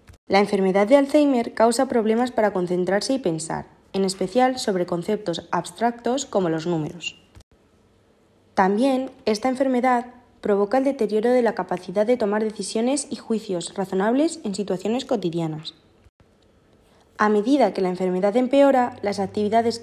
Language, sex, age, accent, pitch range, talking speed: Spanish, female, 20-39, Spanish, 165-235 Hz, 135 wpm